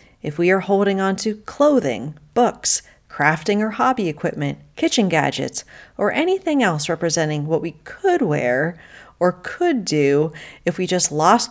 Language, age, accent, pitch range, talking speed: English, 40-59, American, 150-220 Hz, 150 wpm